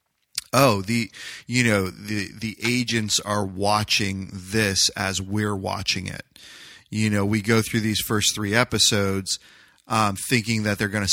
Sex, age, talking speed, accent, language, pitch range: male, 30-49, 155 wpm, American, English, 95-110 Hz